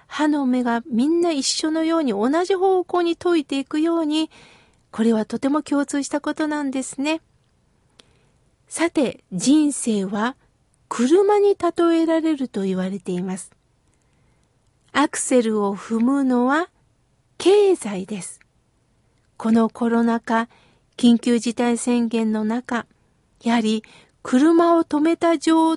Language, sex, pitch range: Japanese, female, 235-325 Hz